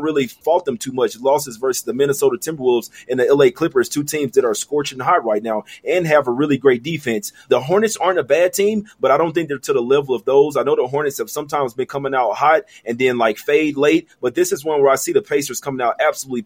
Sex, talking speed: male, 260 wpm